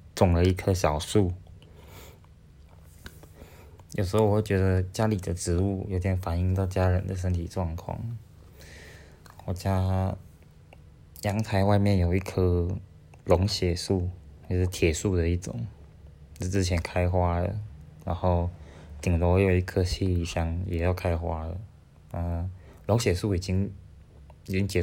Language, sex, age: Chinese, male, 20-39